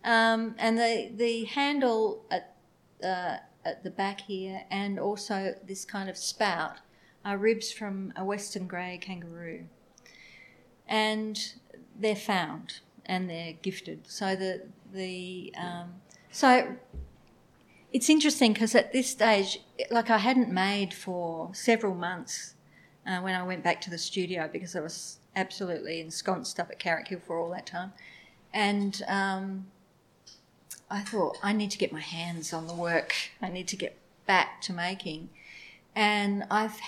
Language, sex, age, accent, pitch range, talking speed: English, female, 40-59, Australian, 180-220 Hz, 150 wpm